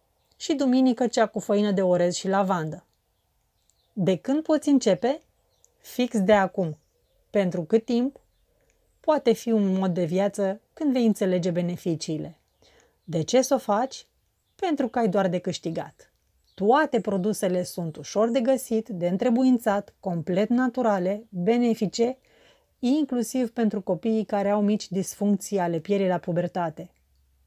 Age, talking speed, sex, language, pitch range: 30-49, 135 wpm, female, Romanian, 185-235 Hz